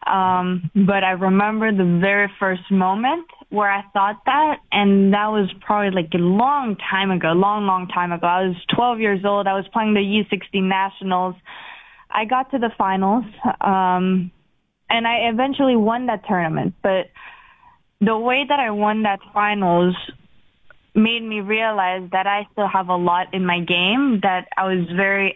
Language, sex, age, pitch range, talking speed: English, female, 20-39, 185-210 Hz, 170 wpm